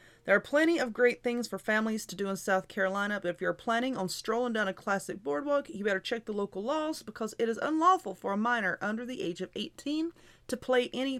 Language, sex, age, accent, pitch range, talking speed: English, female, 30-49, American, 210-290 Hz, 235 wpm